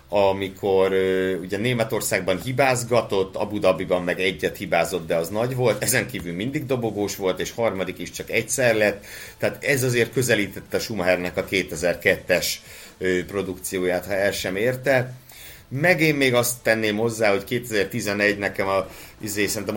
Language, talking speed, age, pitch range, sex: Hungarian, 145 wpm, 60-79, 90-110 Hz, male